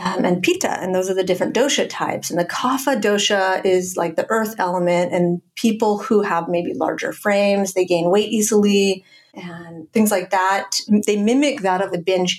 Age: 30-49